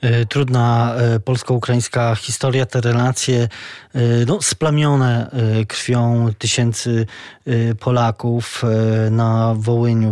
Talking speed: 70 wpm